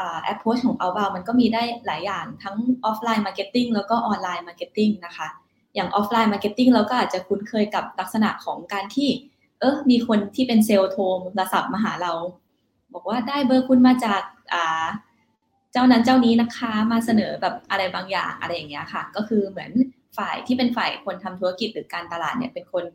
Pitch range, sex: 185-235 Hz, female